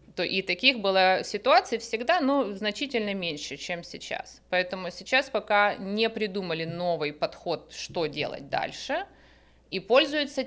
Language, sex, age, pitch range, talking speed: Russian, female, 30-49, 170-220 Hz, 130 wpm